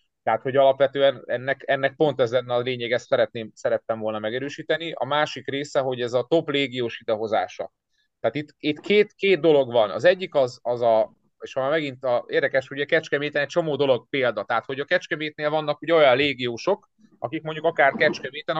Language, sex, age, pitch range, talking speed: Hungarian, male, 30-49, 130-165 Hz, 195 wpm